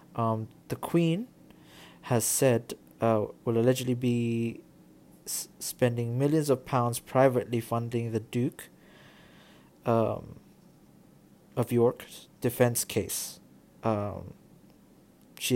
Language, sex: English, male